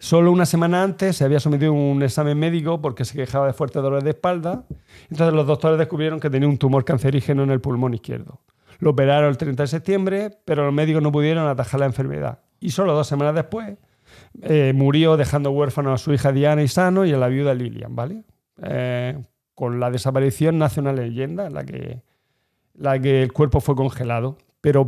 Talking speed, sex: 205 wpm, male